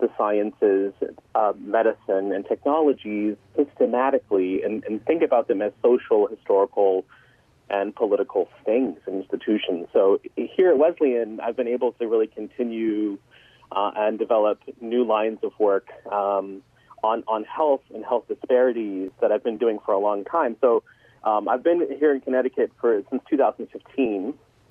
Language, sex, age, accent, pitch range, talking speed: English, male, 30-49, American, 105-145 Hz, 150 wpm